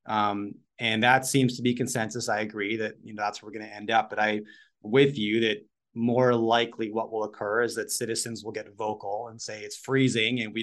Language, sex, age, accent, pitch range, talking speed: English, male, 30-49, American, 110-135 Hz, 230 wpm